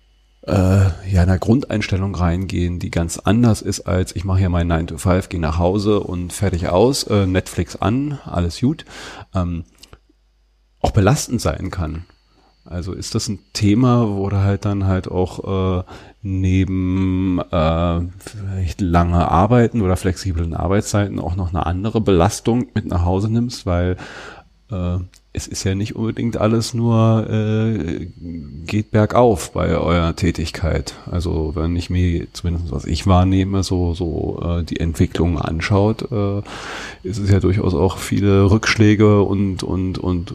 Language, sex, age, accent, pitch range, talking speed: German, male, 40-59, German, 85-105 Hz, 145 wpm